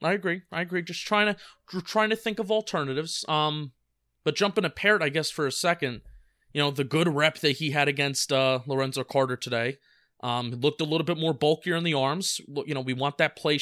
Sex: male